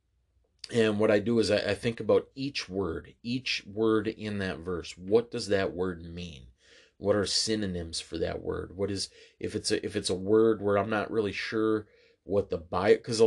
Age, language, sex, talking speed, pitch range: 30-49, English, male, 205 wpm, 95-110 Hz